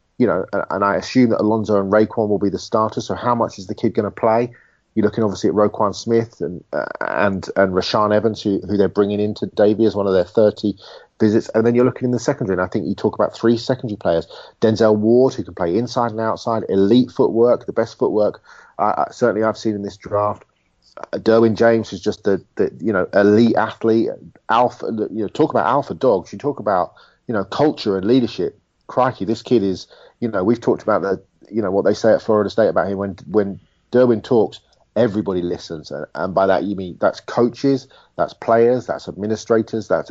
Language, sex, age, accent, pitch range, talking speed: English, male, 30-49, British, 100-115 Hz, 220 wpm